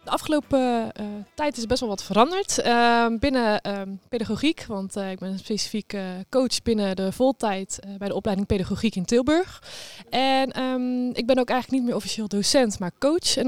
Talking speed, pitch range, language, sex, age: 195 wpm, 200-240 Hz, Dutch, female, 20-39